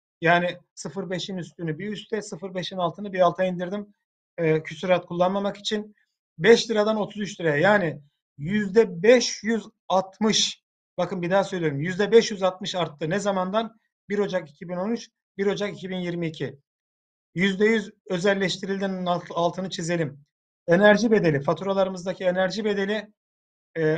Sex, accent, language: male, native, Turkish